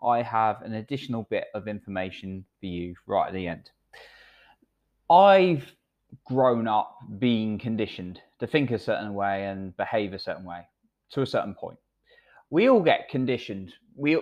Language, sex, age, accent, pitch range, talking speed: English, male, 20-39, British, 105-145 Hz, 155 wpm